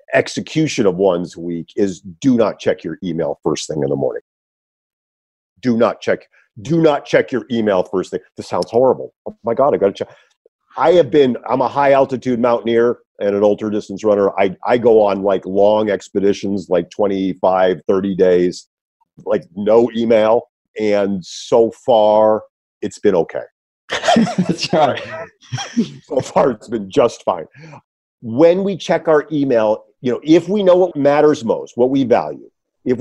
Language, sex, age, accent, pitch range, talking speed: English, male, 50-69, American, 110-160 Hz, 165 wpm